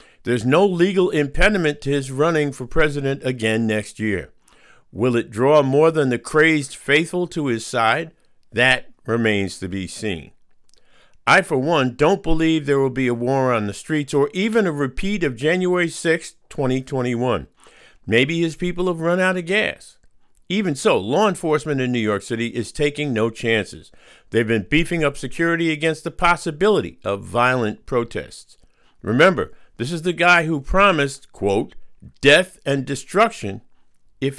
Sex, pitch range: male, 115-165 Hz